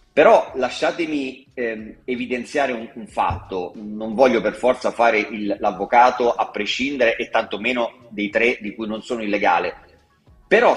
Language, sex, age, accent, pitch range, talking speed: Italian, male, 30-49, native, 105-130 Hz, 145 wpm